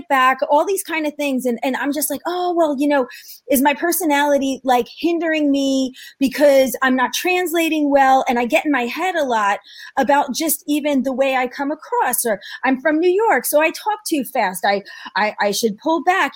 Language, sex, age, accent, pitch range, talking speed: English, female, 30-49, American, 240-295 Hz, 215 wpm